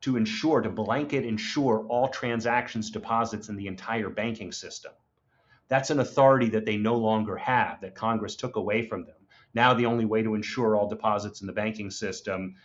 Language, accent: English, American